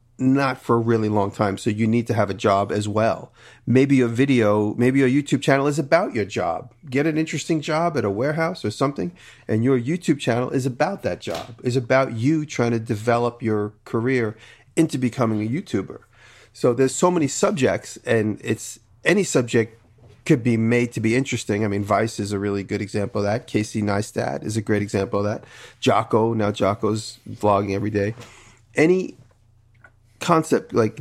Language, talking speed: English, 190 wpm